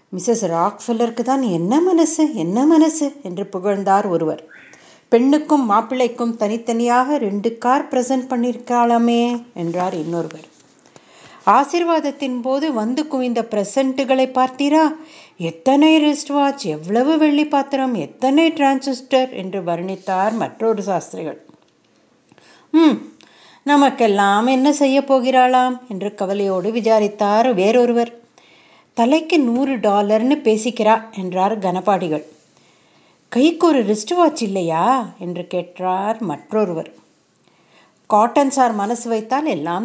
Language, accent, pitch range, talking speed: Tamil, native, 195-270 Hz, 95 wpm